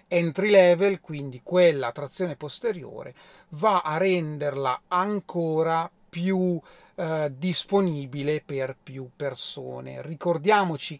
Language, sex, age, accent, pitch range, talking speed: Italian, male, 30-49, native, 140-180 Hz, 95 wpm